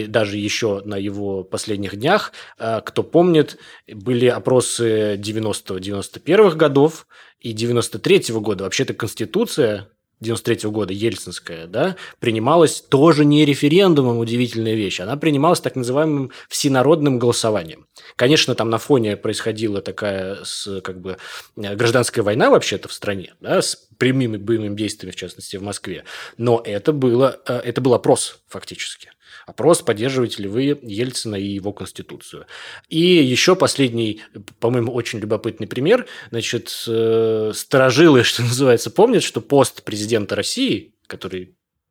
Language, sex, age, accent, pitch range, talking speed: Russian, male, 20-39, native, 105-130 Hz, 125 wpm